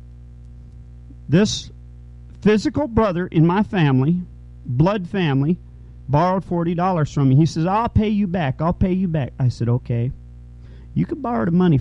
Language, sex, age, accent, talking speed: English, male, 40-59, American, 150 wpm